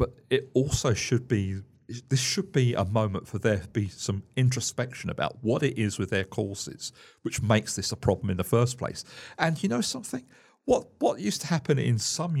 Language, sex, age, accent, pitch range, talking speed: English, male, 50-69, British, 100-135 Hz, 210 wpm